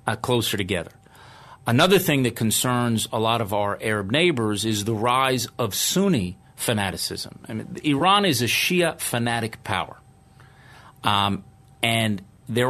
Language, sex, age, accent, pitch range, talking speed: English, male, 40-59, American, 110-135 Hz, 140 wpm